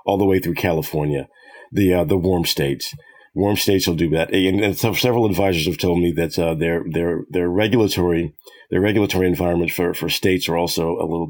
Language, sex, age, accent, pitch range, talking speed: English, male, 40-59, American, 85-95 Hz, 205 wpm